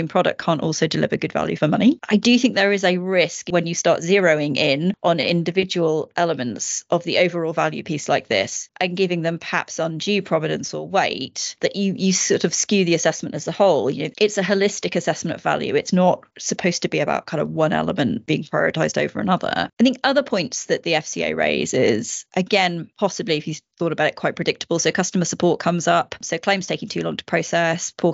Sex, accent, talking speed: female, British, 215 wpm